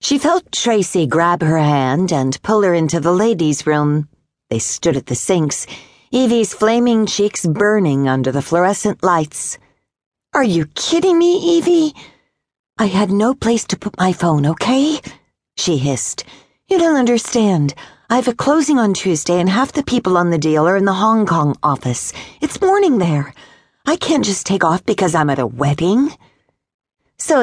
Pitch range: 150-230 Hz